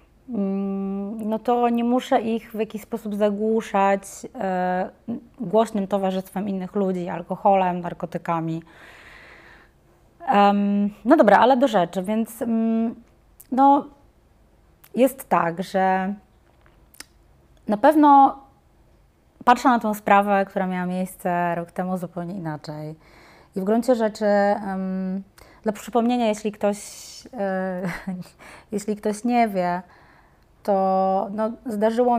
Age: 20-39